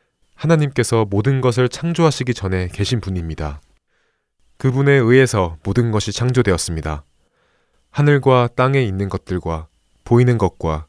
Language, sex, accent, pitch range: Korean, male, native, 80-125 Hz